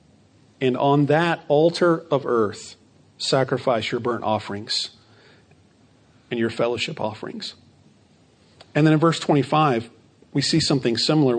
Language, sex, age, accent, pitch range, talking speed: English, male, 40-59, American, 125-155 Hz, 120 wpm